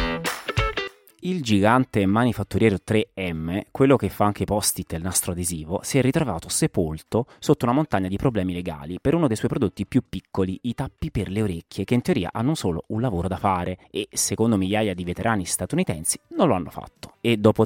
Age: 30-49